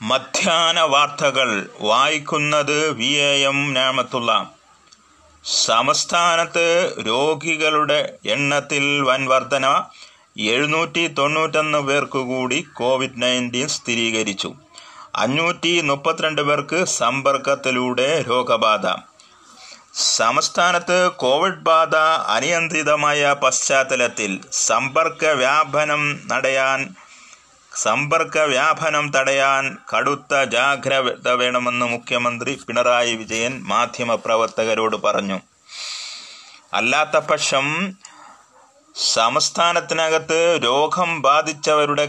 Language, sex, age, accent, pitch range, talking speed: Malayalam, male, 30-49, native, 130-155 Hz, 60 wpm